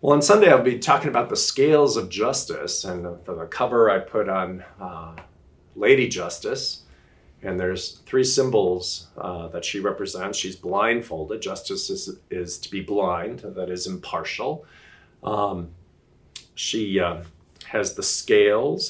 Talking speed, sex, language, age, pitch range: 145 wpm, male, English, 40-59, 85-140 Hz